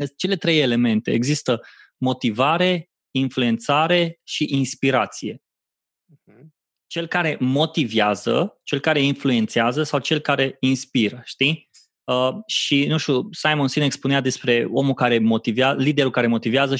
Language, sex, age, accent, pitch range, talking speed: Romanian, male, 20-39, native, 125-155 Hz, 120 wpm